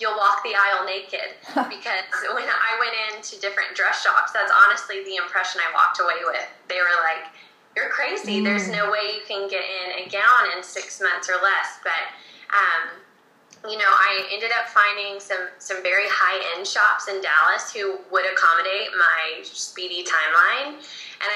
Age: 10-29